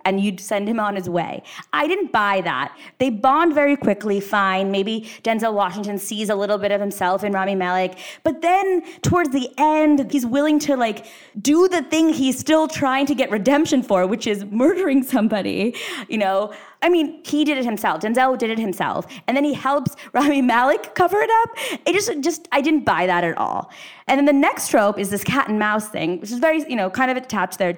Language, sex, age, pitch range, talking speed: English, female, 20-39, 200-300 Hz, 220 wpm